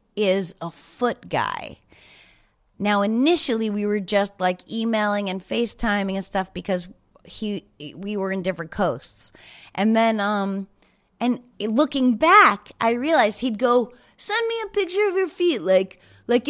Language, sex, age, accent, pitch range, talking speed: English, female, 30-49, American, 190-250 Hz, 150 wpm